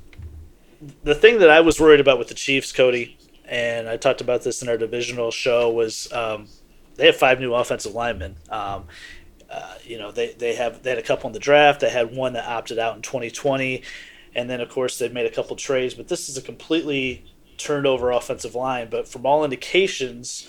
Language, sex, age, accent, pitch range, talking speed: English, male, 30-49, American, 120-145 Hz, 220 wpm